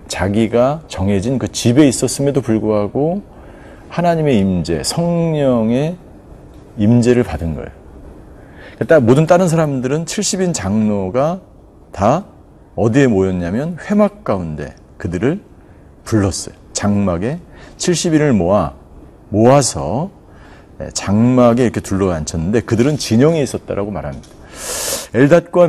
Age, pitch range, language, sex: 40-59, 100-140 Hz, Korean, male